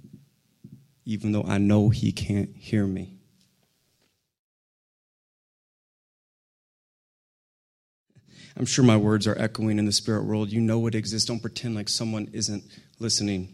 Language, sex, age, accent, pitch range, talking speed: English, male, 30-49, American, 115-140 Hz, 125 wpm